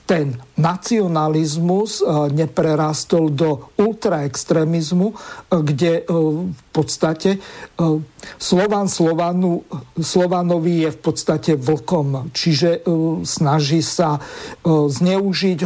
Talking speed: 70 wpm